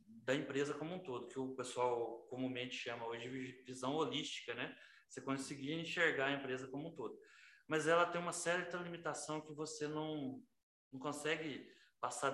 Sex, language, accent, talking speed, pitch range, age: male, Portuguese, Brazilian, 170 wpm, 140-205 Hz, 20-39